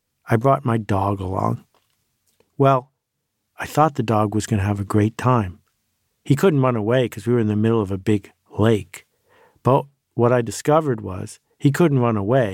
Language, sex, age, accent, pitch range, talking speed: English, male, 50-69, American, 110-140 Hz, 190 wpm